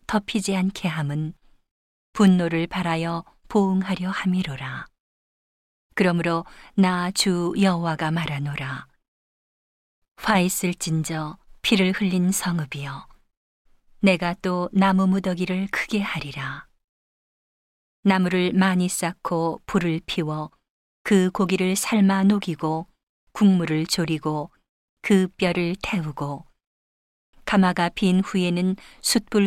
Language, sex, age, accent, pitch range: Korean, female, 40-59, native, 165-195 Hz